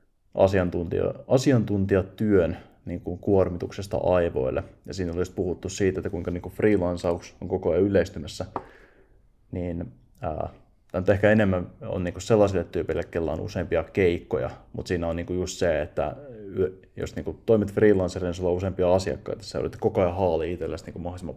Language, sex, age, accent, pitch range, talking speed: Finnish, male, 20-39, native, 90-105 Hz, 155 wpm